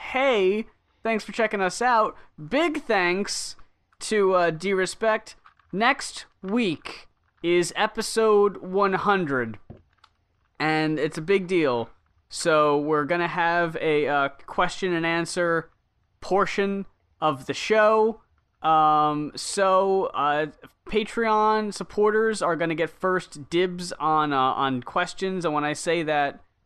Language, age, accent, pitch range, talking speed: English, 20-39, American, 130-185 Hz, 125 wpm